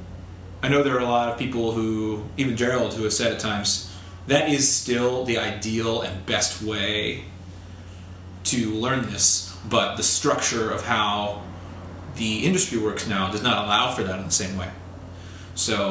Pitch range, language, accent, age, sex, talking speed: 95-120 Hz, English, American, 30-49, male, 175 wpm